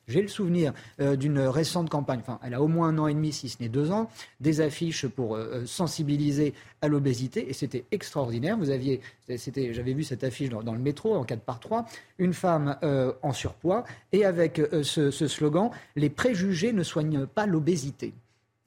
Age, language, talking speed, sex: 40-59, French, 210 wpm, male